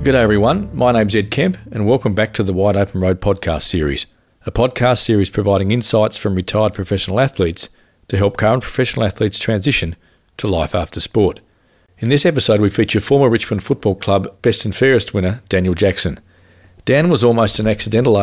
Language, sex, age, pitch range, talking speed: English, male, 40-59, 95-115 Hz, 180 wpm